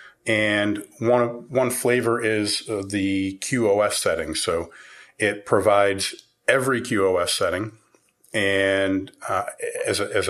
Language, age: English, 40-59